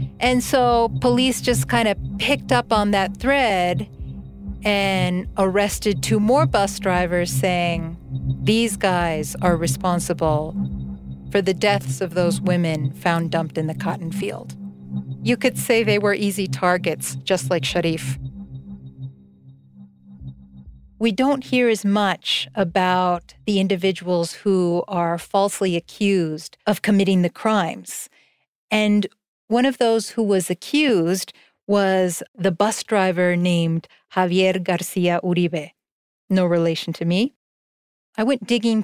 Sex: female